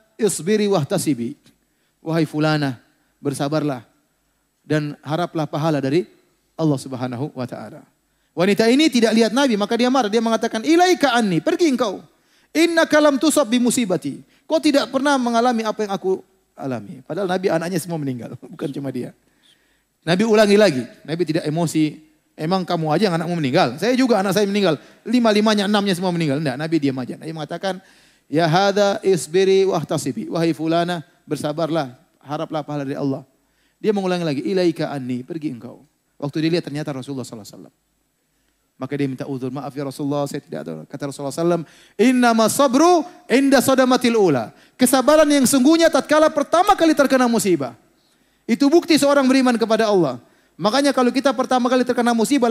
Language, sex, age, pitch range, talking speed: Indonesian, male, 30-49, 155-240 Hz, 150 wpm